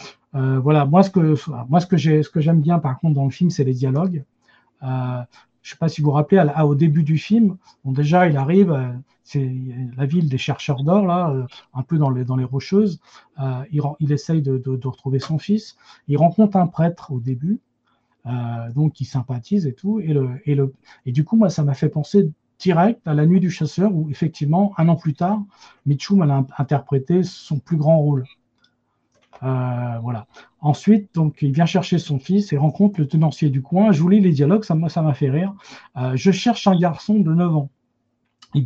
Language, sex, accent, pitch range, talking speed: French, male, French, 135-175 Hz, 220 wpm